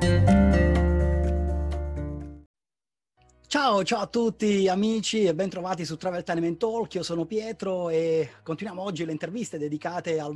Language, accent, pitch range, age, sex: Italian, native, 160-195 Hz, 30-49, male